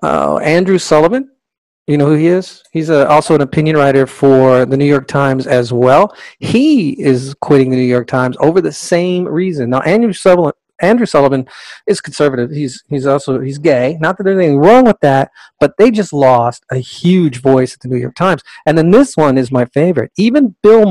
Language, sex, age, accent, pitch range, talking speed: English, male, 40-59, American, 135-185 Hz, 205 wpm